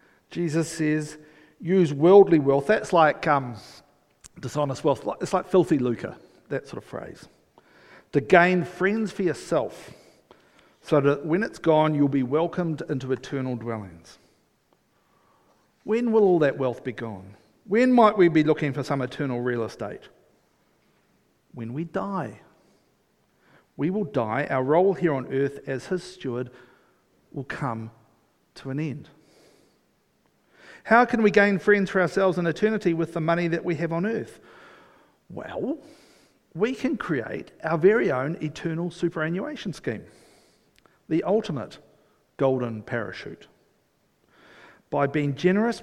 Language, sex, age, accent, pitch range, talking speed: English, male, 50-69, Australian, 135-180 Hz, 135 wpm